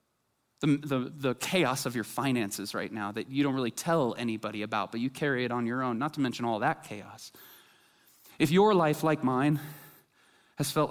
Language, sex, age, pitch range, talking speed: English, male, 20-39, 125-190 Hz, 200 wpm